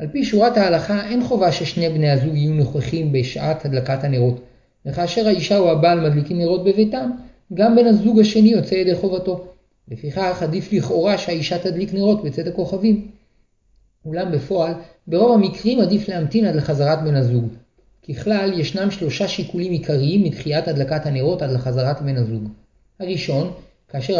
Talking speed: 150 wpm